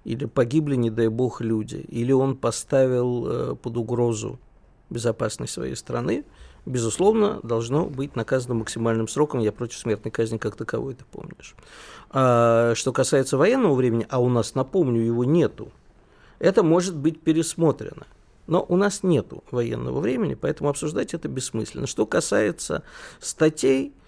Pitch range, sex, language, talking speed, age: 115-165 Hz, male, Russian, 140 wpm, 50-69